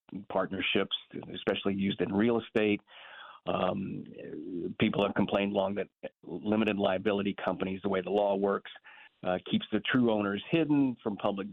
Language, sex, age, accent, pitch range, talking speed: English, male, 40-59, American, 95-110 Hz, 145 wpm